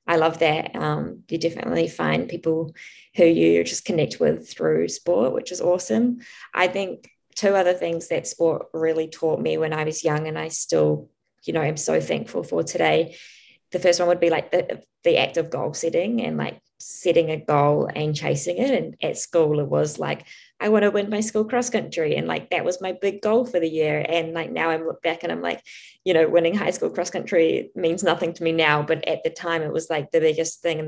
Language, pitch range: English, 155-180 Hz